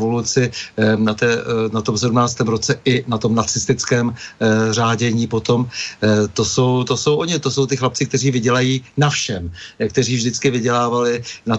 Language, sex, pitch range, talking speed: Czech, male, 110-130 Hz, 150 wpm